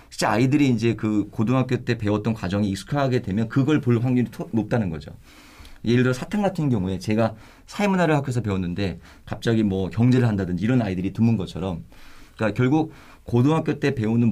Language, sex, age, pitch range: Korean, male, 40-59, 100-130 Hz